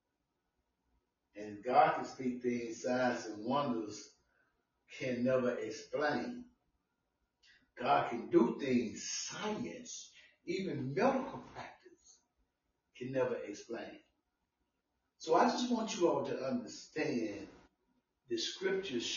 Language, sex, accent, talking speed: English, female, American, 100 wpm